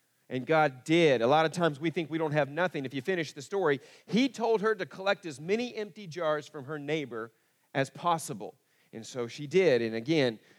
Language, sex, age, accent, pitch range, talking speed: English, male, 40-59, American, 130-165 Hz, 215 wpm